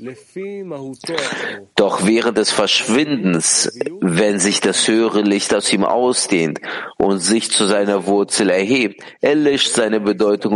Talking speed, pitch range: 120 wpm, 100-130 Hz